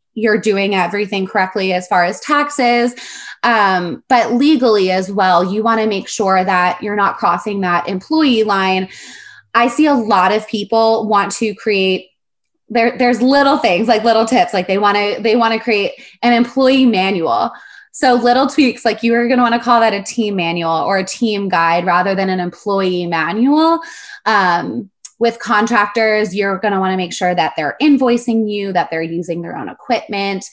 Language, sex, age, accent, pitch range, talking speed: English, female, 20-39, American, 190-235 Hz, 185 wpm